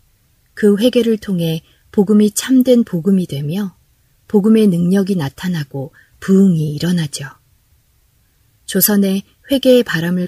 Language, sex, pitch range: Korean, female, 145-200 Hz